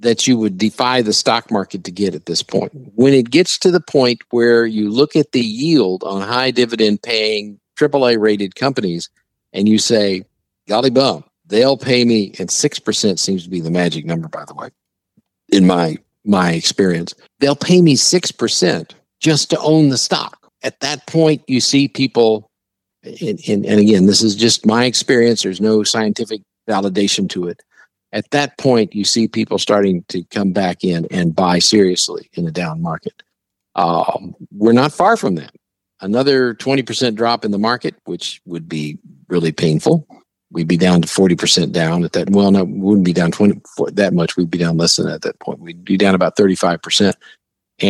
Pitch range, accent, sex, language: 95-125 Hz, American, male, English